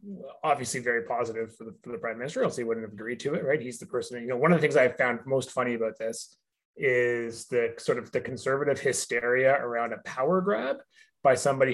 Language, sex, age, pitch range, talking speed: English, male, 30-49, 120-160 Hz, 230 wpm